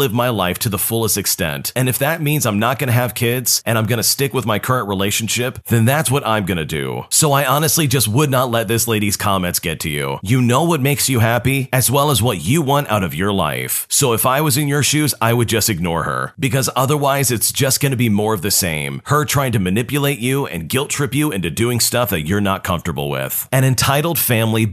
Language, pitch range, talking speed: English, 100-135 Hz, 255 wpm